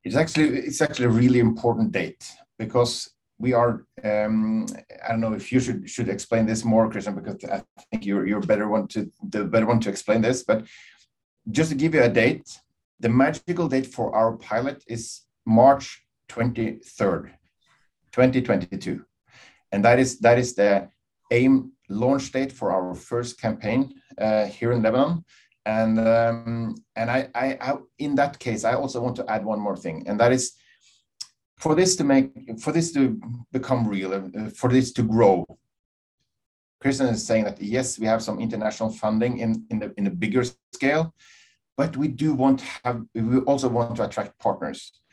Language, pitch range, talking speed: English, 115-140 Hz, 180 wpm